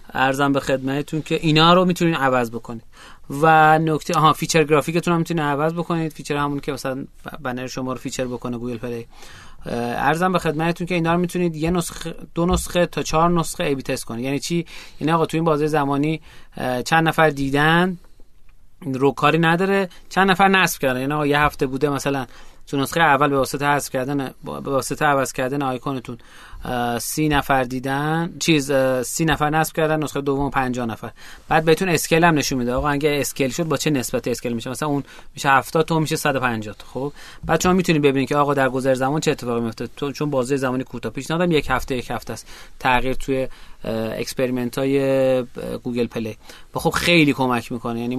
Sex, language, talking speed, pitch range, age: male, Persian, 190 wpm, 130-160 Hz, 30-49